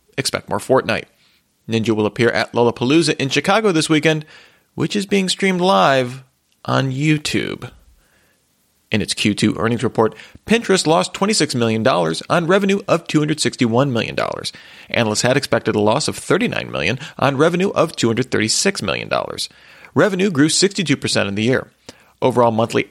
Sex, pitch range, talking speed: male, 115-170 Hz, 140 wpm